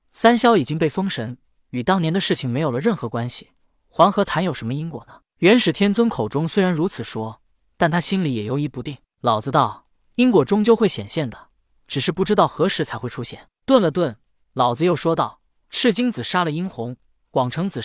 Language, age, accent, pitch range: Chinese, 20-39, native, 135-195 Hz